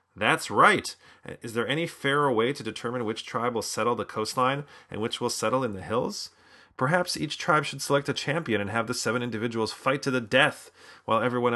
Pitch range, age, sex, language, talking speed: 110-130 Hz, 40-59, male, English, 210 wpm